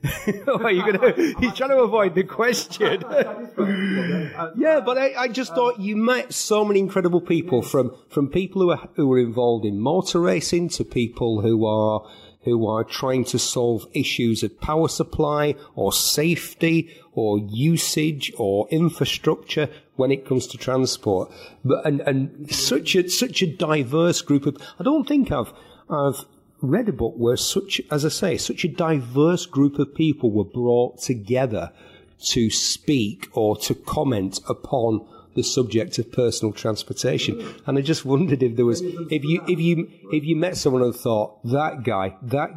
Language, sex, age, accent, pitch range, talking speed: English, male, 40-59, British, 115-170 Hz, 170 wpm